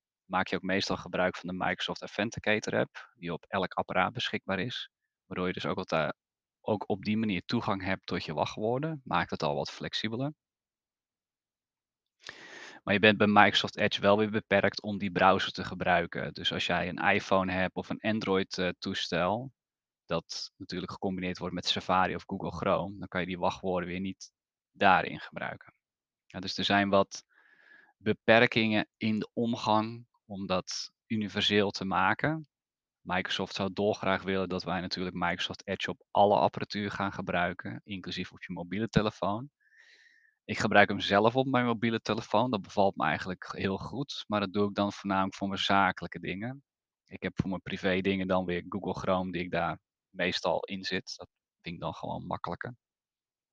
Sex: male